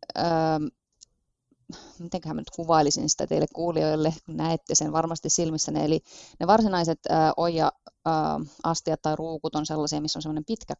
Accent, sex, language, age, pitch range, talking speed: native, female, Finnish, 30-49, 150-170 Hz, 150 wpm